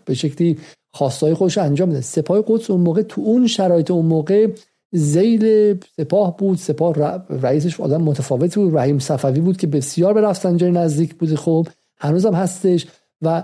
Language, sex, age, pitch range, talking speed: Persian, male, 50-69, 150-200 Hz, 165 wpm